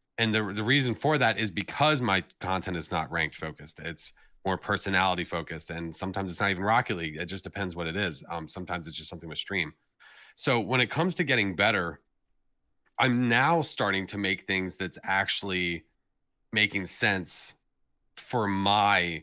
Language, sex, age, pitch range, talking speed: English, male, 30-49, 85-110 Hz, 180 wpm